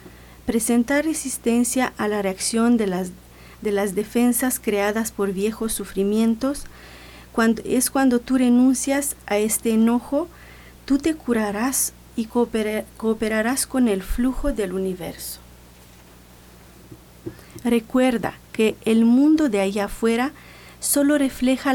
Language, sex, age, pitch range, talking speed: Spanish, female, 40-59, 205-255 Hz, 115 wpm